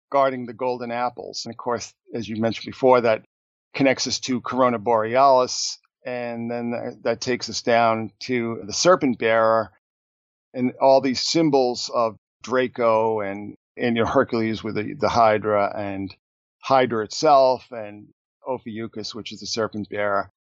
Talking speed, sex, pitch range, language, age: 150 wpm, male, 105-125 Hz, English, 50-69